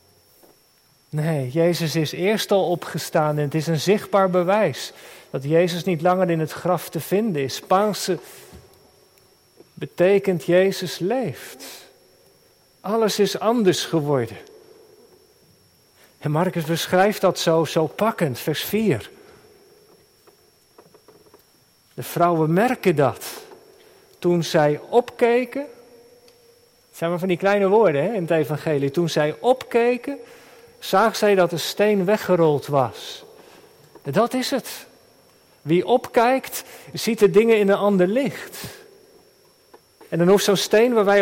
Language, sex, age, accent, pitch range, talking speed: Dutch, male, 40-59, Dutch, 170-255 Hz, 125 wpm